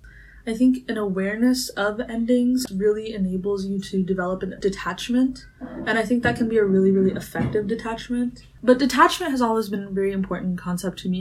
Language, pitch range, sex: English, 185-215 Hz, female